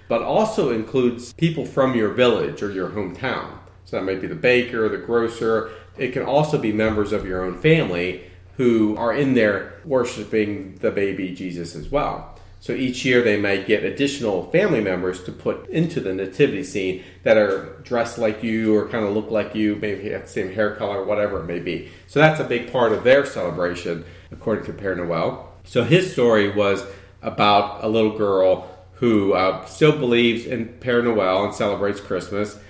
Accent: American